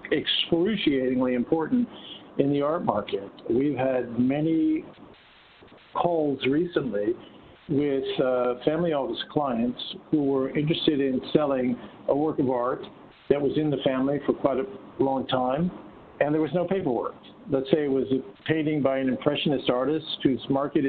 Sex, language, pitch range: male, English, 130-160 Hz